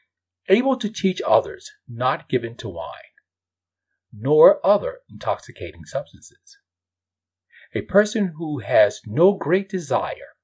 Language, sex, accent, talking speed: English, male, American, 110 wpm